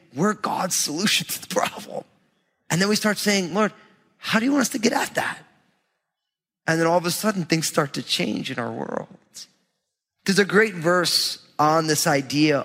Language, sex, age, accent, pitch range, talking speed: English, male, 30-49, American, 140-200 Hz, 195 wpm